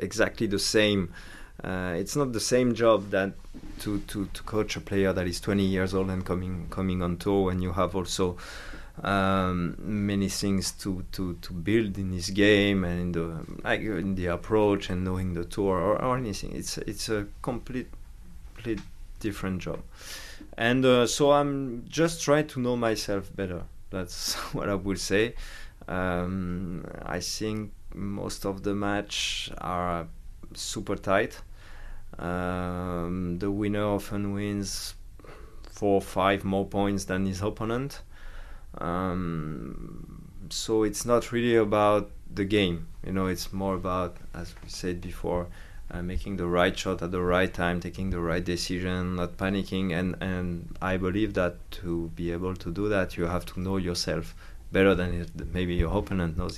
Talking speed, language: 160 wpm, English